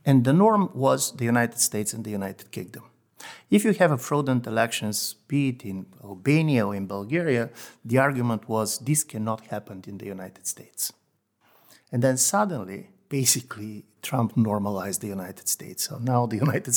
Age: 50-69